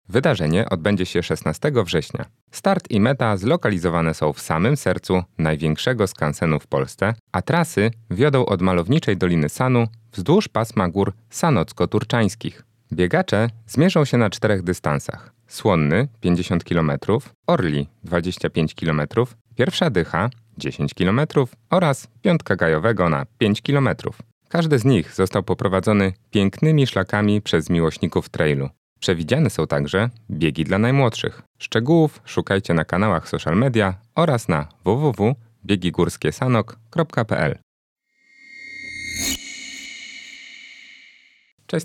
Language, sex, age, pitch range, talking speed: Polish, male, 30-49, 85-125 Hz, 115 wpm